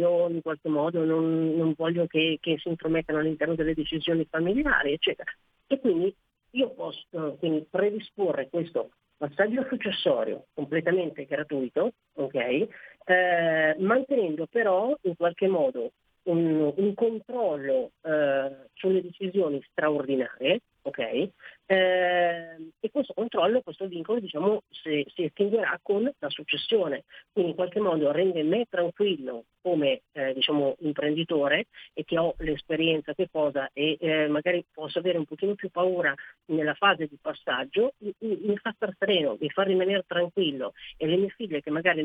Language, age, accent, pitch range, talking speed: Italian, 40-59, native, 155-195 Hz, 145 wpm